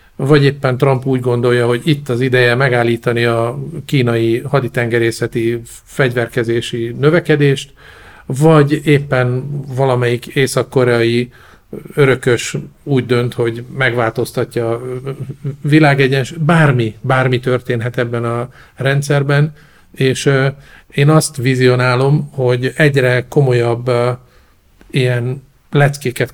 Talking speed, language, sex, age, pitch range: 90 wpm, Hungarian, male, 50-69, 125-140 Hz